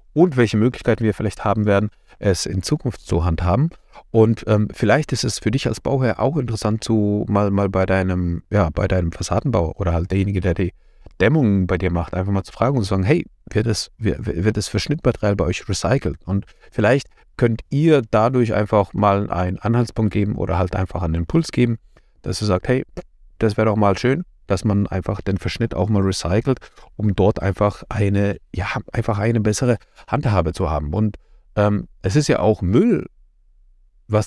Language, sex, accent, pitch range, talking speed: German, male, German, 90-115 Hz, 195 wpm